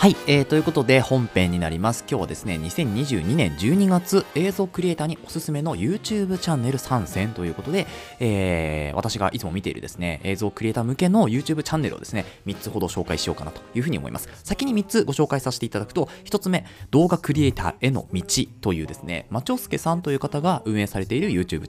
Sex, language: male, Japanese